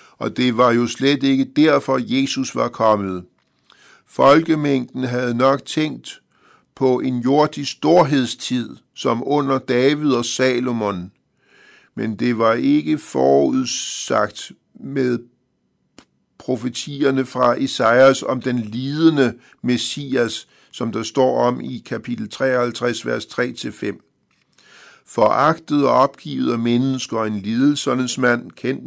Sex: male